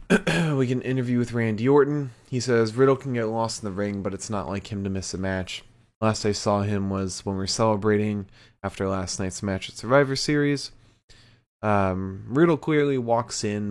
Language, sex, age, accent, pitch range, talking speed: English, male, 20-39, American, 100-120 Hz, 195 wpm